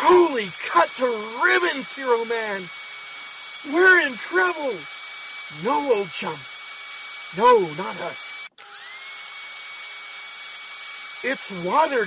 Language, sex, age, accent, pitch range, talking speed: English, male, 50-69, American, 180-270 Hz, 85 wpm